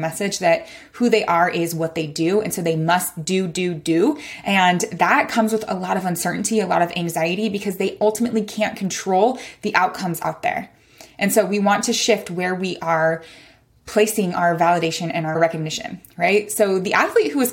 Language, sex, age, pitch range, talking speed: English, female, 20-39, 175-225 Hz, 200 wpm